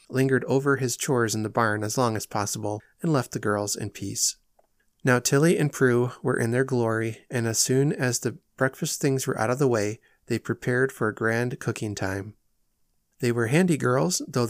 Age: 30-49